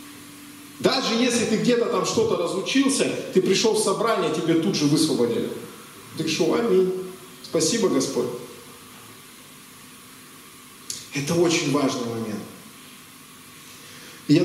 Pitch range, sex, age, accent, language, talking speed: 160-235 Hz, male, 40-59, native, Russian, 105 wpm